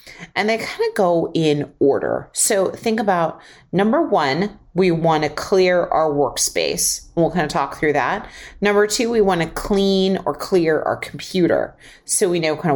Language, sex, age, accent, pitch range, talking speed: English, female, 30-49, American, 150-195 Hz, 180 wpm